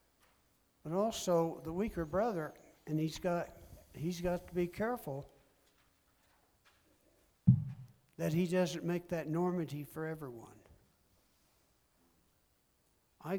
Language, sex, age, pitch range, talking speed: English, male, 60-79, 135-170 Hz, 100 wpm